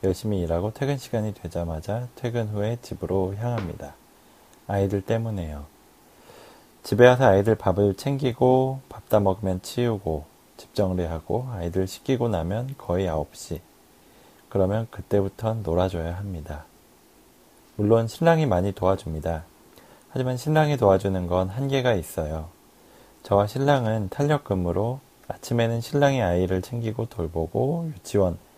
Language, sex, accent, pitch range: Korean, male, native, 90-115 Hz